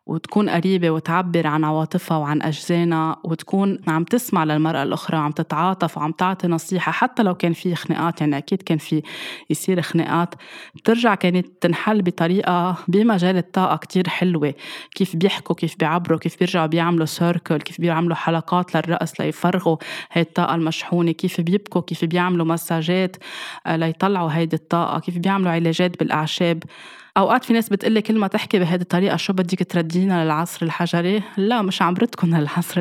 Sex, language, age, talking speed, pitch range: female, Arabic, 20-39, 150 wpm, 160-185 Hz